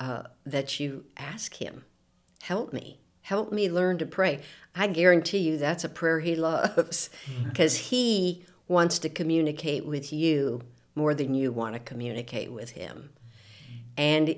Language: English